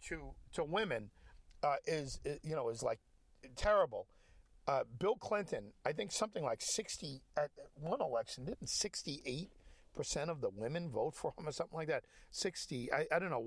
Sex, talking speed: male, 180 wpm